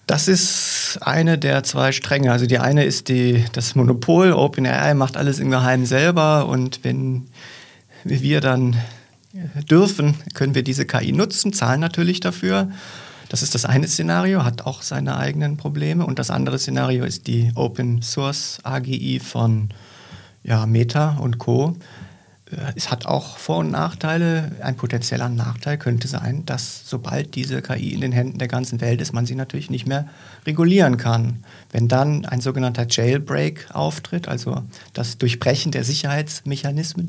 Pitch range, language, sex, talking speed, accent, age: 120-145 Hz, German, male, 150 wpm, German, 40-59